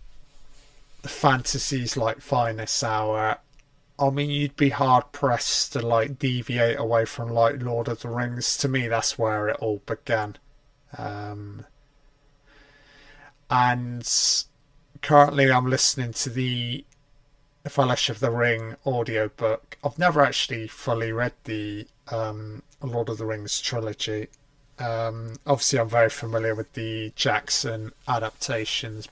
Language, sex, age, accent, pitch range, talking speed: English, male, 30-49, British, 115-145 Hz, 125 wpm